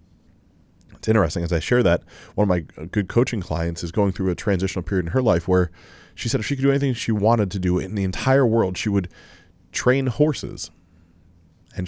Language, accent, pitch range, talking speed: English, American, 85-115 Hz, 210 wpm